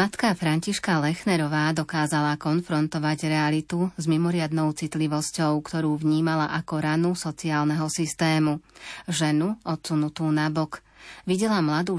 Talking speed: 105 wpm